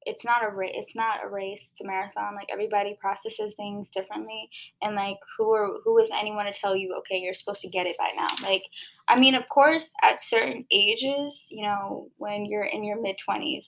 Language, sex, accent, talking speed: English, female, American, 220 wpm